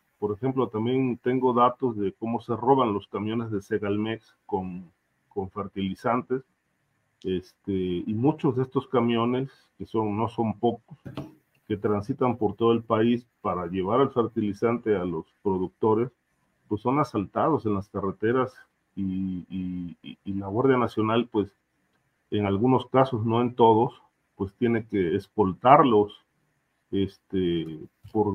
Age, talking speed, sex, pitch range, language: 40-59, 130 wpm, male, 100-125 Hz, Spanish